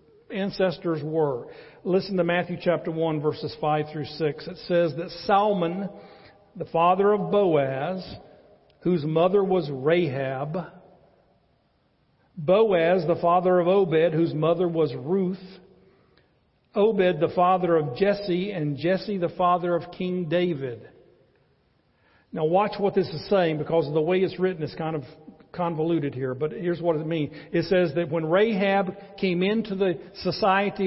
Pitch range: 160-195 Hz